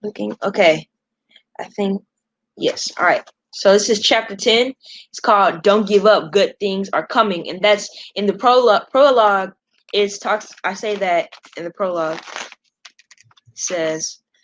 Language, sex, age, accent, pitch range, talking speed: English, female, 10-29, American, 185-220 Hz, 150 wpm